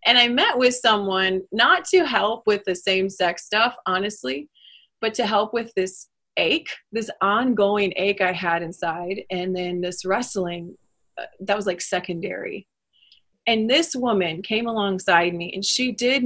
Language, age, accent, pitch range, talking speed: English, 30-49, American, 190-235 Hz, 160 wpm